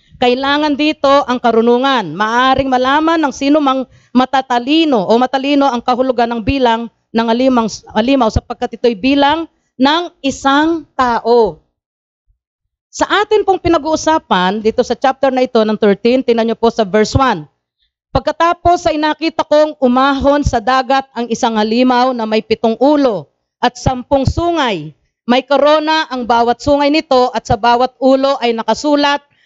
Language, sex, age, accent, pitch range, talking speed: English, female, 40-59, Filipino, 210-275 Hz, 145 wpm